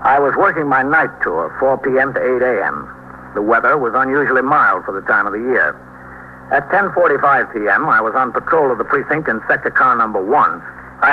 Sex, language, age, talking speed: male, English, 60-79, 205 wpm